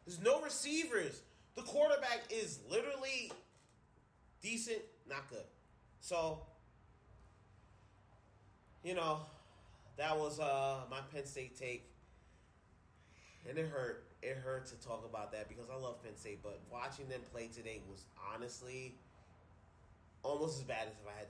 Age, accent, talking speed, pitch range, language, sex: 20-39, American, 135 wpm, 100-130 Hz, English, male